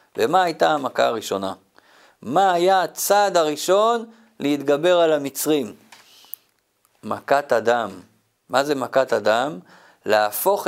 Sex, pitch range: male, 145-210 Hz